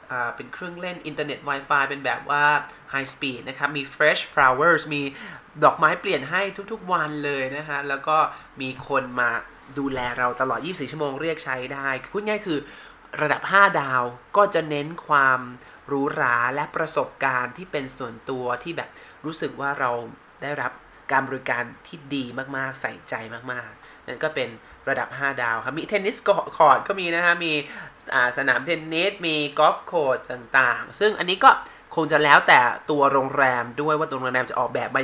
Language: Thai